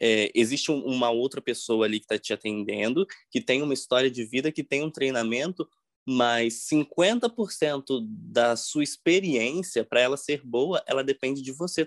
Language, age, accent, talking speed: Portuguese, 20-39, Brazilian, 160 wpm